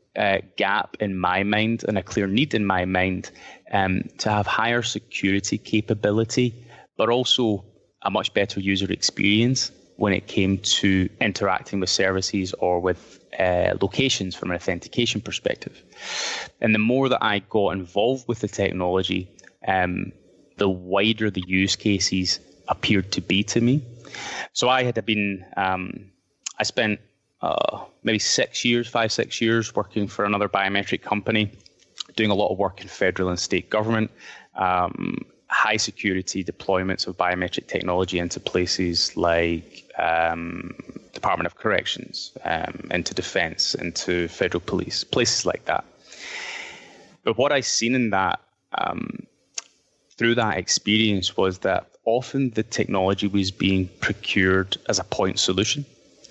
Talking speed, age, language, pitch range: 145 wpm, 20-39, English, 95-110 Hz